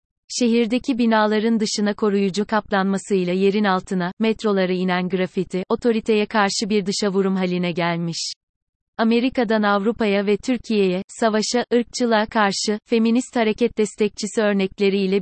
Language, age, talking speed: Turkish, 30-49, 105 wpm